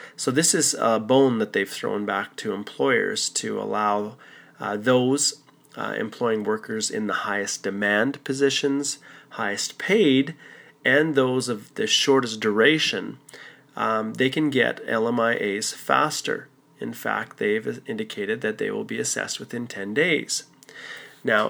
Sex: male